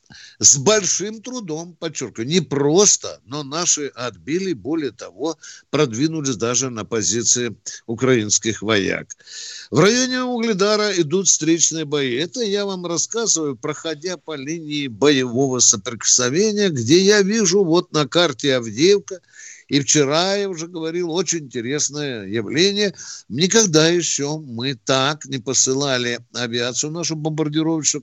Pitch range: 125-175 Hz